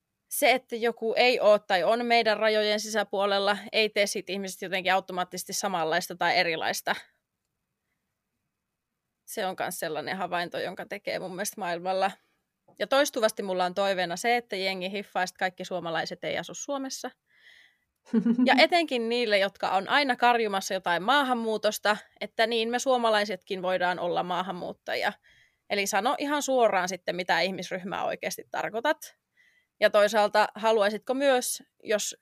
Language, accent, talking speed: Finnish, native, 135 wpm